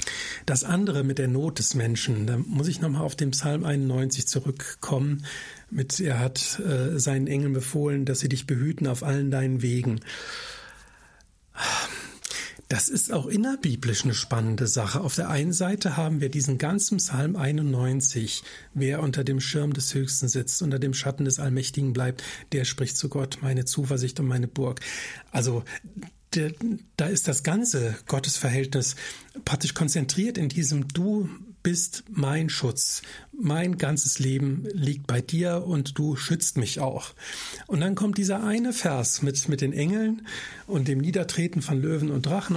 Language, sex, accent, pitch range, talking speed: German, male, German, 130-165 Hz, 155 wpm